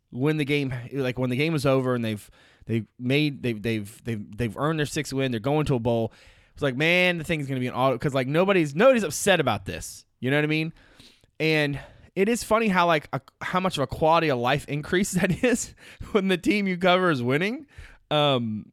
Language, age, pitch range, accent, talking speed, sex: English, 20-39, 120-150 Hz, American, 235 wpm, male